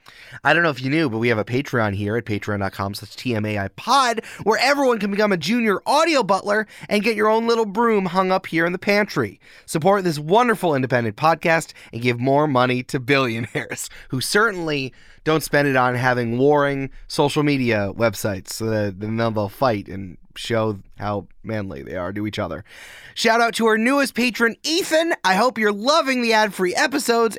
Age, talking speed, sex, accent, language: 30-49, 190 wpm, male, American, English